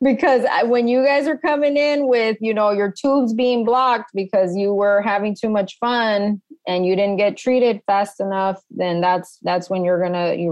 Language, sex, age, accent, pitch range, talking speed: English, female, 20-39, American, 180-220 Hz, 205 wpm